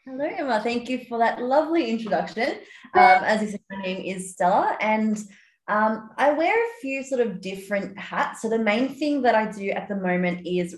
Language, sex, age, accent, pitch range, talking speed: English, female, 20-39, Australian, 185-240 Hz, 205 wpm